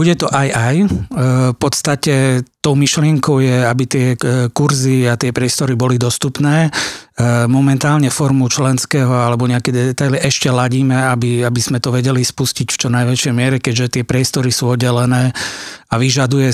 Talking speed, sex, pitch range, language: 150 wpm, male, 125-140 Hz, Slovak